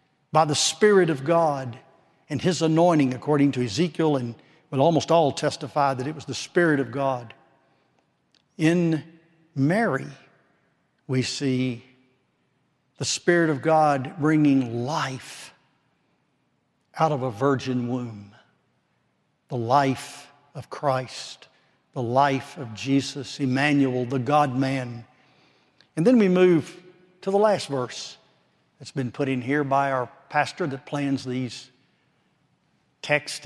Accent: American